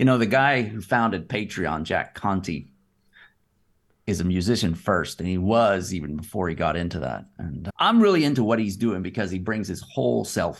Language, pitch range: English, 100-130 Hz